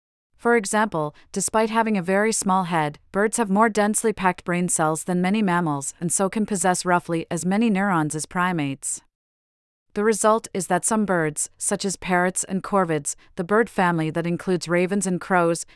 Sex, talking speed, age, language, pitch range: female, 180 wpm, 40-59, English, 165-200 Hz